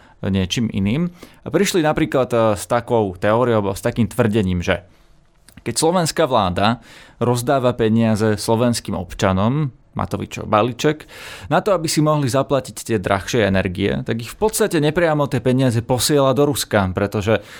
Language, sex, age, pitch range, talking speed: Slovak, male, 20-39, 105-135 Hz, 140 wpm